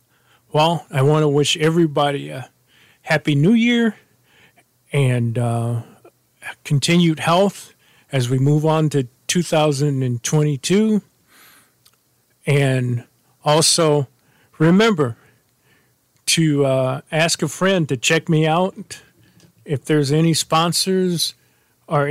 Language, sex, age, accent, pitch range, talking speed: English, male, 40-59, American, 130-165 Hz, 100 wpm